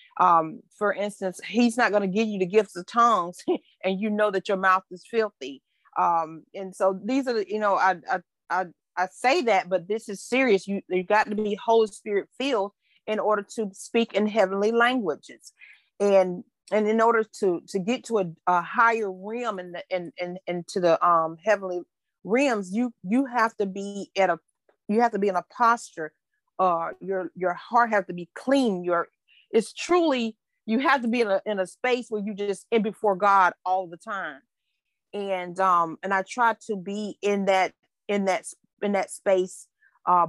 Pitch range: 180-220 Hz